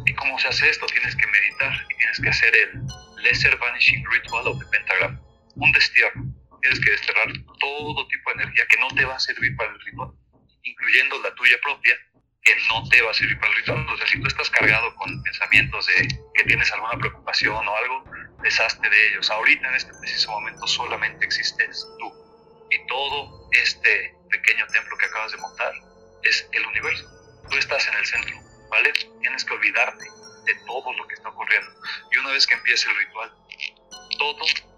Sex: male